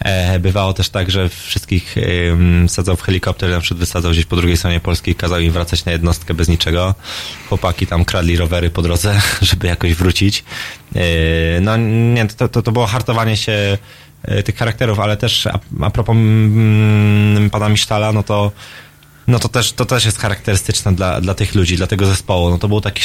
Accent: native